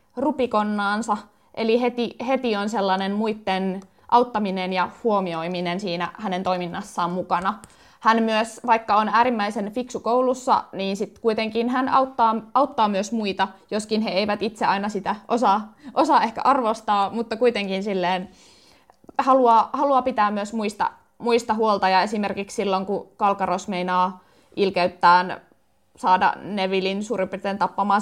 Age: 20-39